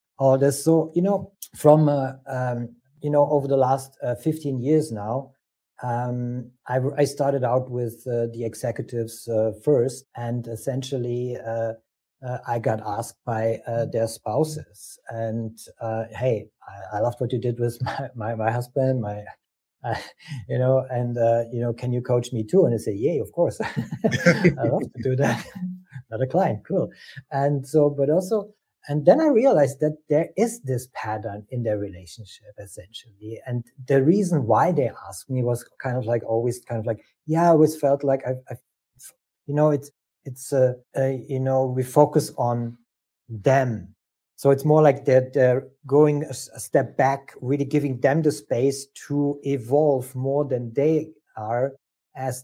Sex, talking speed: male, 175 wpm